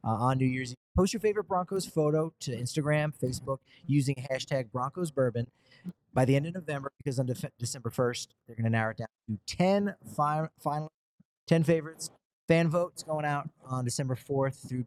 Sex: male